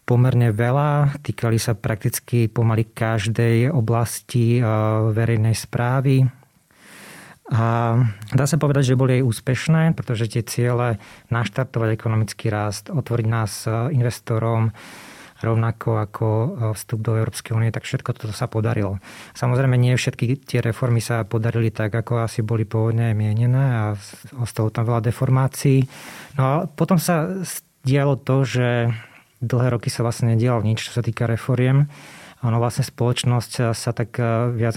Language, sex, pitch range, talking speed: Slovak, male, 115-130 Hz, 140 wpm